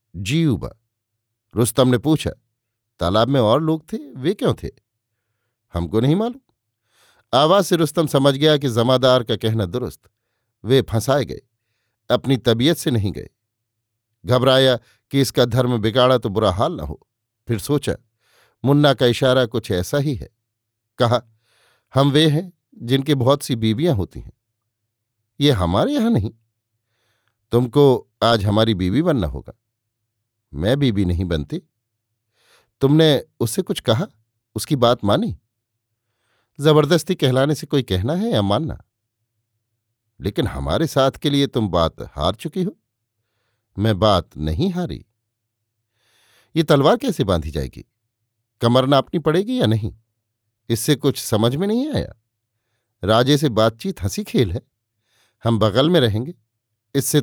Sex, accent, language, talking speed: male, native, Hindi, 140 wpm